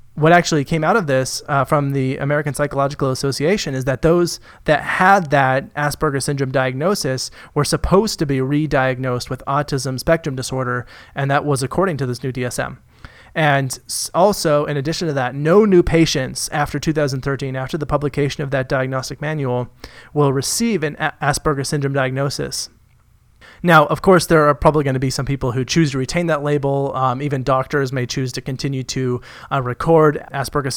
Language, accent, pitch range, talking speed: English, American, 130-150 Hz, 175 wpm